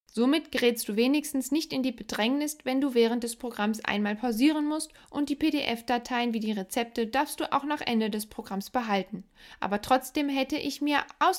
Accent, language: German, German